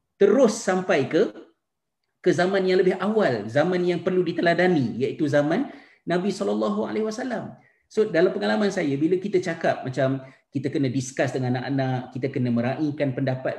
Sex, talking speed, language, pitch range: male, 145 wpm, Malay, 130-195 Hz